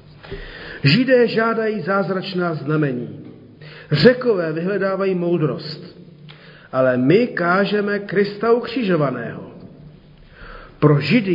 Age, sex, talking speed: 40-59, male, 75 wpm